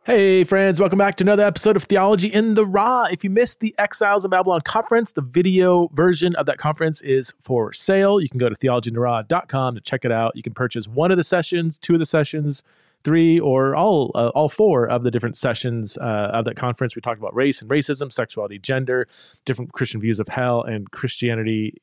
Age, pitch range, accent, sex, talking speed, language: 30-49, 120-170 Hz, American, male, 215 wpm, English